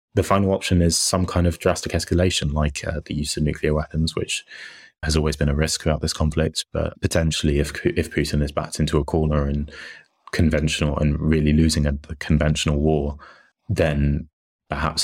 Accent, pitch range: British, 75-80 Hz